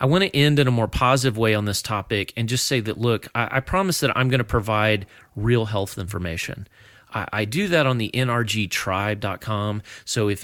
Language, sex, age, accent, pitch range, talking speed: English, male, 30-49, American, 95-120 Hz, 215 wpm